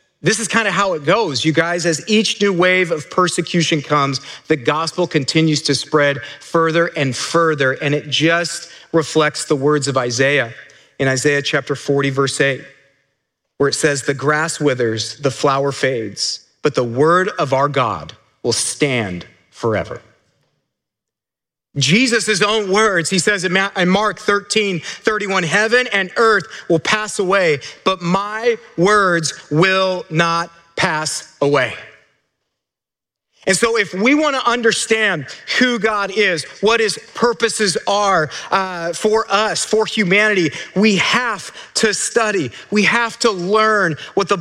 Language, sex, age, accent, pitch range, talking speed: English, male, 40-59, American, 150-210 Hz, 145 wpm